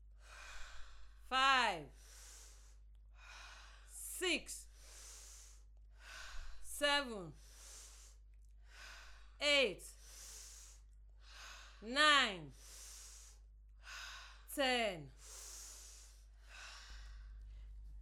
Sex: female